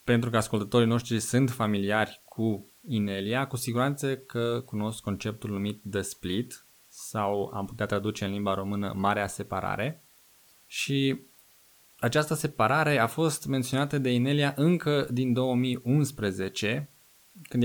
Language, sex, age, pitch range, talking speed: Romanian, male, 20-39, 110-130 Hz, 125 wpm